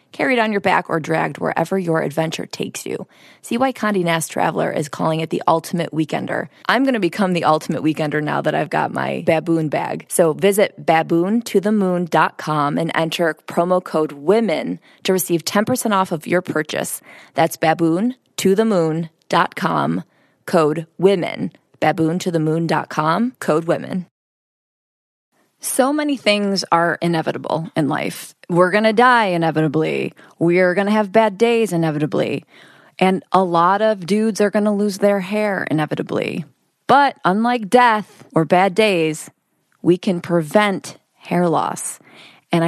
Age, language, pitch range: 20-39, English, 160-210 Hz